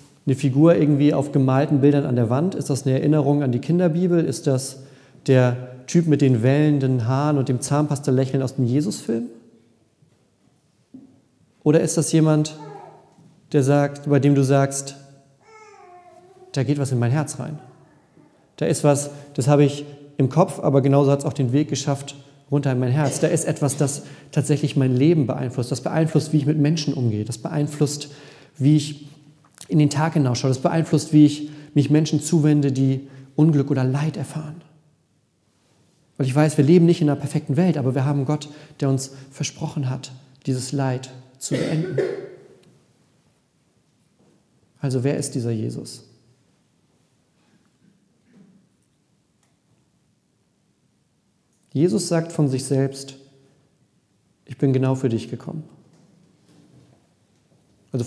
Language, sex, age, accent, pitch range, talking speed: German, male, 40-59, German, 135-150 Hz, 145 wpm